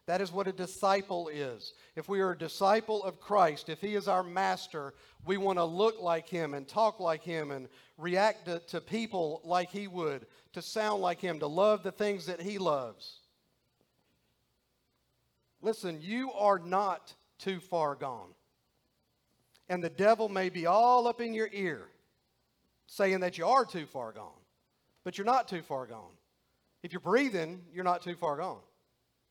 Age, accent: 50-69, American